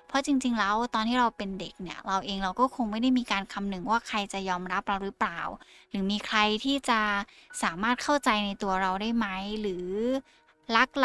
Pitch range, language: 190-235 Hz, Thai